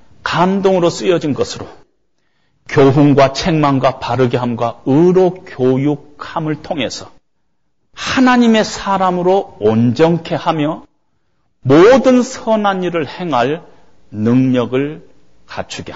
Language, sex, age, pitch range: Korean, male, 40-59, 145-230 Hz